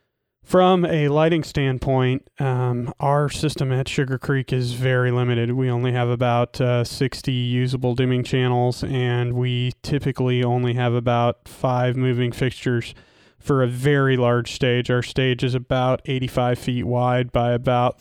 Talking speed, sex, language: 150 wpm, male, English